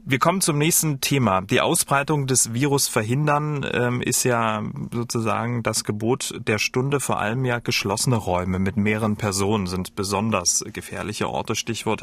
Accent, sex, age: German, male, 30-49